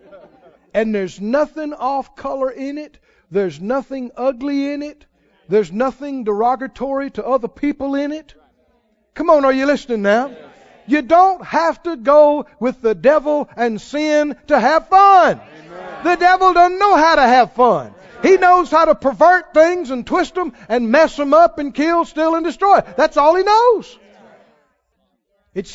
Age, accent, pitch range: 50-69, American, 205-295 Hz